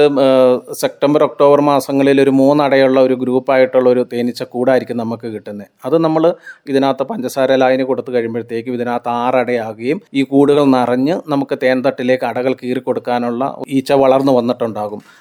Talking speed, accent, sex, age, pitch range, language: 120 wpm, native, male, 30-49, 125-140 Hz, Malayalam